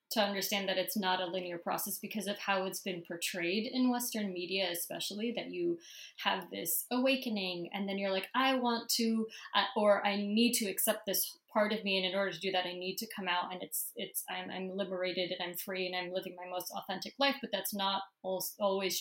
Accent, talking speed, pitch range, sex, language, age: American, 220 wpm, 185-225 Hz, female, English, 20-39